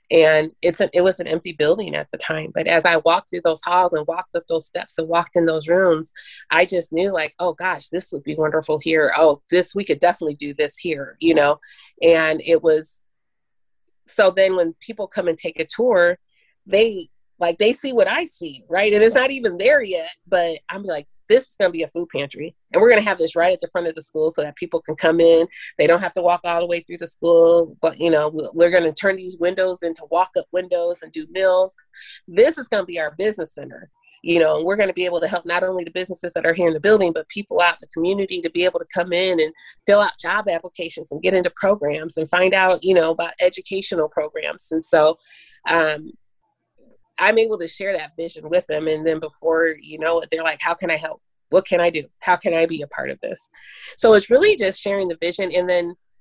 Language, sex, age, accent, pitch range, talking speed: English, female, 30-49, American, 160-190 Hz, 250 wpm